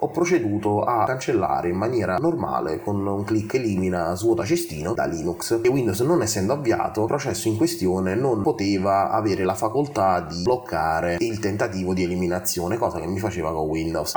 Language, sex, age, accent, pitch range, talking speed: Italian, male, 30-49, native, 90-115 Hz, 175 wpm